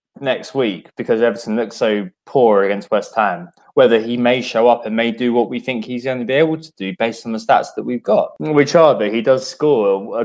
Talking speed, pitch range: 245 wpm, 115-160 Hz